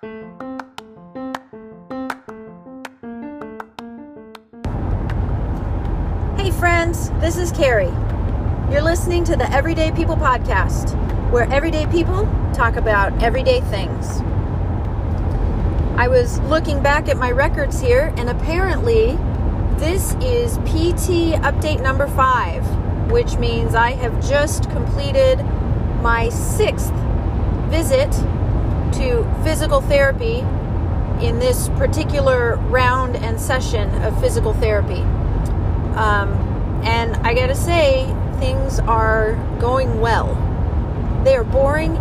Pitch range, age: 90-110 Hz, 40-59